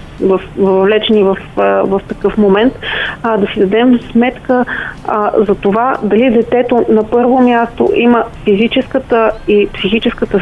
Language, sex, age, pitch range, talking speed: Bulgarian, female, 30-49, 200-230 Hz, 130 wpm